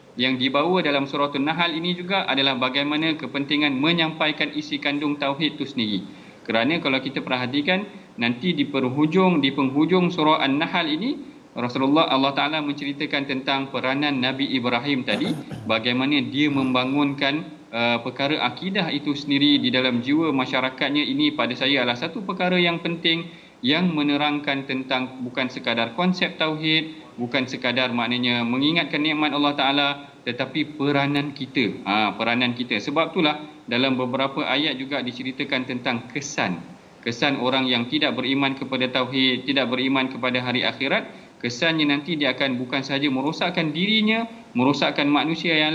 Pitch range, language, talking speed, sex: 130-160 Hz, Malayalam, 145 wpm, male